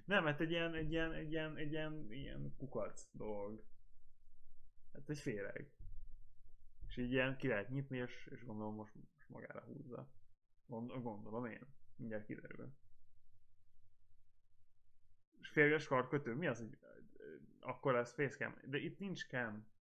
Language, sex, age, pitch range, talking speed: Hungarian, male, 10-29, 95-135 Hz, 140 wpm